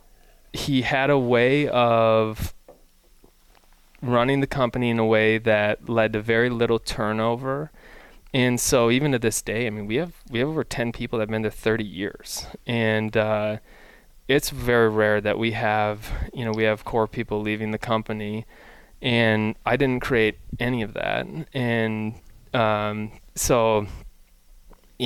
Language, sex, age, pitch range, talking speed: English, male, 20-39, 105-115 Hz, 160 wpm